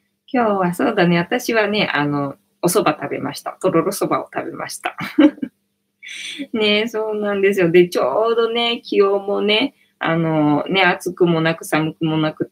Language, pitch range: Japanese, 155-225 Hz